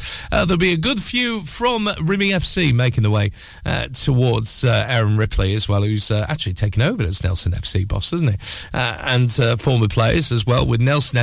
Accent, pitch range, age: British, 110-150 Hz, 40-59